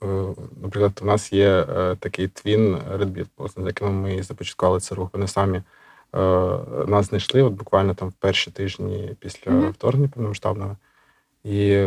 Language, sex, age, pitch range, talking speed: Ukrainian, male, 20-39, 95-110 Hz, 135 wpm